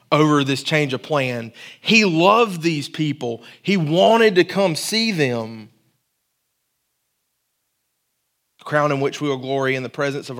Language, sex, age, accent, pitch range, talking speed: English, male, 30-49, American, 130-170 Hz, 145 wpm